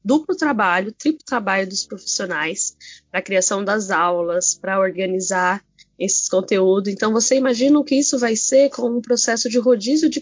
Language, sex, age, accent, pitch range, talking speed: Portuguese, female, 10-29, Brazilian, 195-245 Hz, 170 wpm